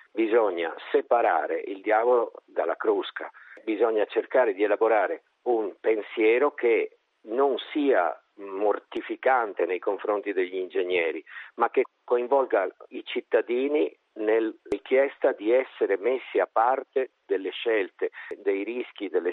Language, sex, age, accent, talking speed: Italian, male, 50-69, native, 115 wpm